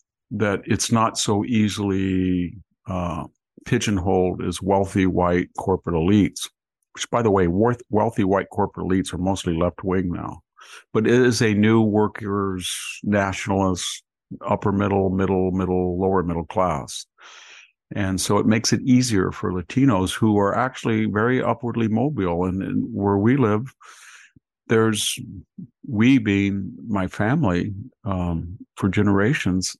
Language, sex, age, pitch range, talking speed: English, male, 50-69, 95-110 Hz, 135 wpm